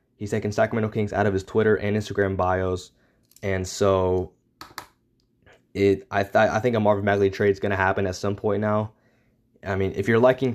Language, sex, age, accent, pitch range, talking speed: English, male, 20-39, American, 95-110 Hz, 200 wpm